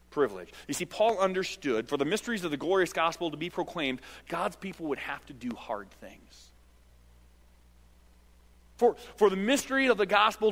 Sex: male